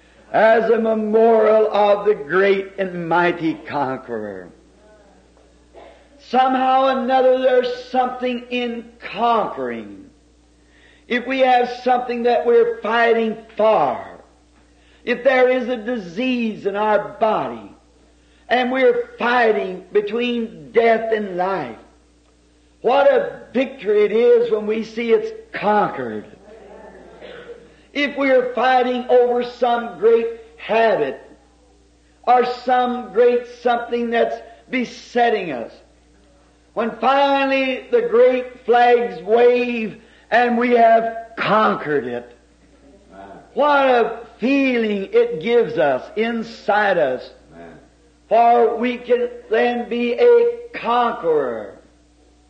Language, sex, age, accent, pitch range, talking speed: English, male, 50-69, American, 205-250 Hz, 105 wpm